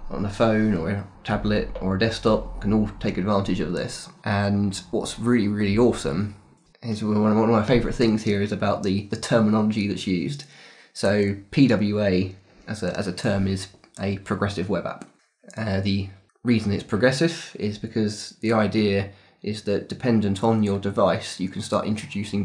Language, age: English, 20-39